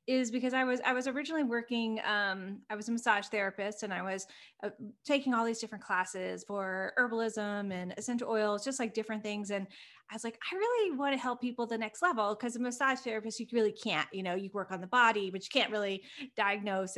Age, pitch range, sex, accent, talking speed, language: 20-39, 195-235 Hz, female, American, 225 wpm, English